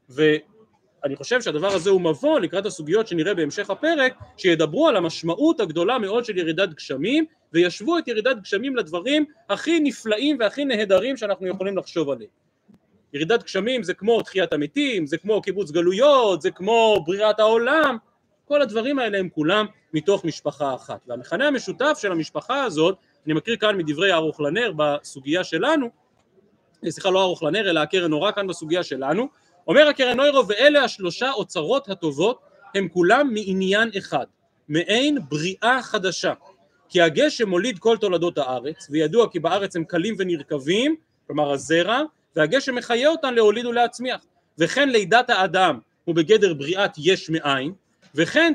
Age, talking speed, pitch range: 30-49, 145 wpm, 165-245 Hz